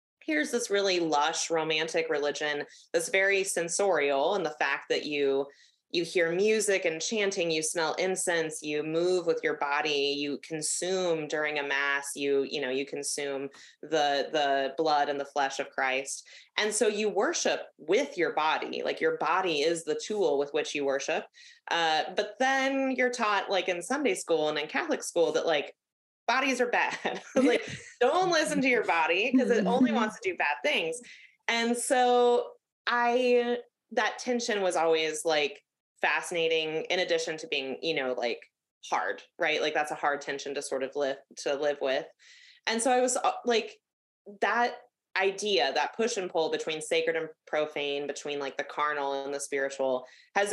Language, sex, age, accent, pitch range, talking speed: English, female, 20-39, American, 145-240 Hz, 175 wpm